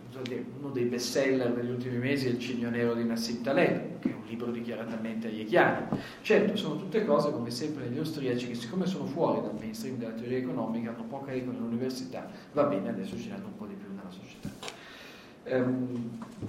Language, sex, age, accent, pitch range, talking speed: Italian, male, 40-59, native, 115-140 Hz, 195 wpm